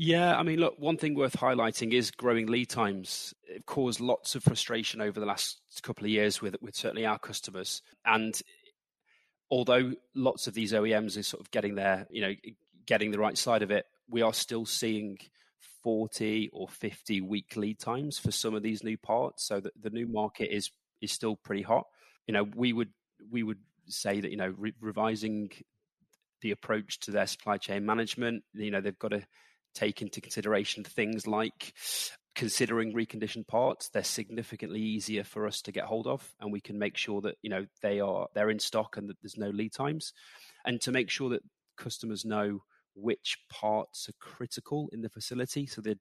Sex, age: male, 30-49